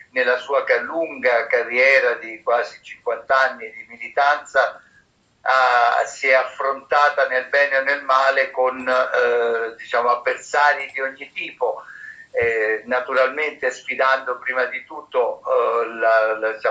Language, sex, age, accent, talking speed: Italian, male, 50-69, native, 110 wpm